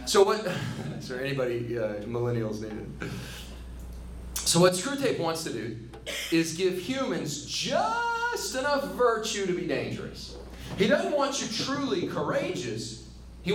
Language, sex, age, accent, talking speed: English, male, 40-59, American, 130 wpm